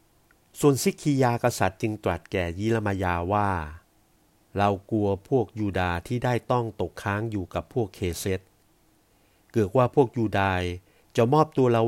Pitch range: 90-115 Hz